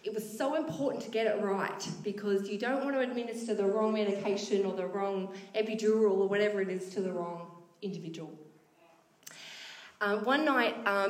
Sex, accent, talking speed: female, Australian, 180 wpm